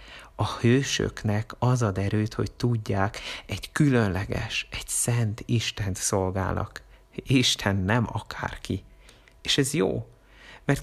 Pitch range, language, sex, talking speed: 100-120 Hz, Hungarian, male, 110 wpm